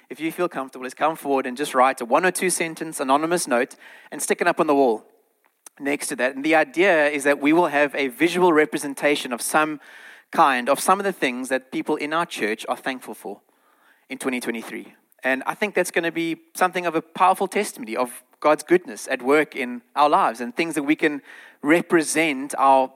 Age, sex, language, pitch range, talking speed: 30-49, male, English, 130-170 Hz, 215 wpm